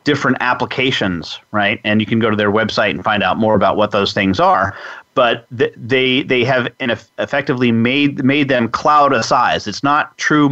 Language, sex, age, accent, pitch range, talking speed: English, male, 40-59, American, 110-135 Hz, 200 wpm